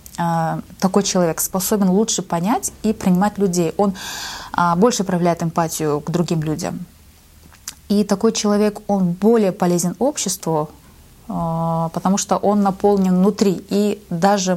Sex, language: female, Russian